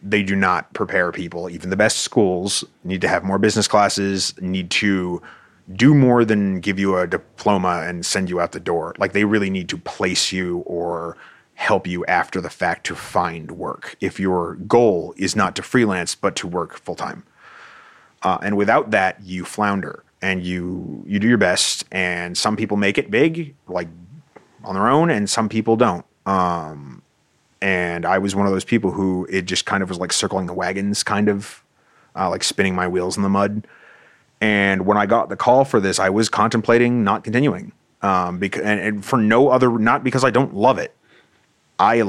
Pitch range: 90-105 Hz